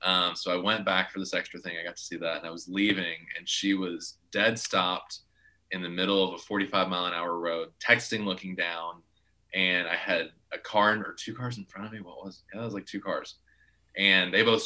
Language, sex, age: English, male, 20-39